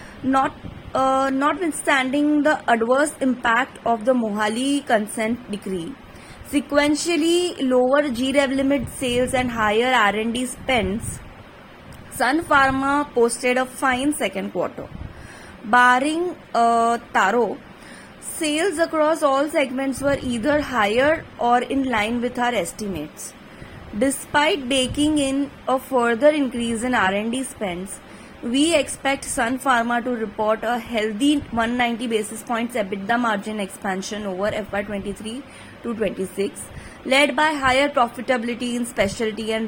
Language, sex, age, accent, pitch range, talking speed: English, female, 20-39, Indian, 230-275 Hz, 115 wpm